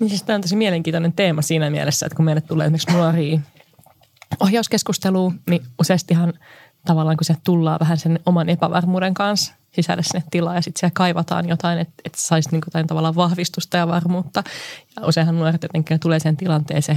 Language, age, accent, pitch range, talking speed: Finnish, 20-39, native, 155-175 Hz, 175 wpm